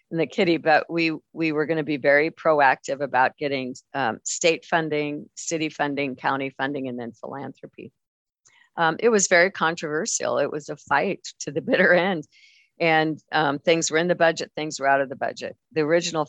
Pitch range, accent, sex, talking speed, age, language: 145-170 Hz, American, female, 190 wpm, 50-69, English